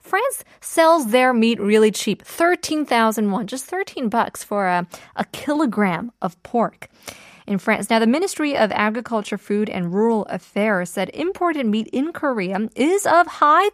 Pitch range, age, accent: 200-300 Hz, 20-39, American